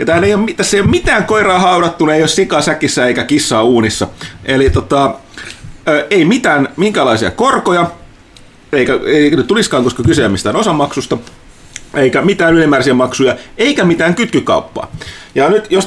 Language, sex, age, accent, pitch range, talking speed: Finnish, male, 30-49, native, 115-165 Hz, 150 wpm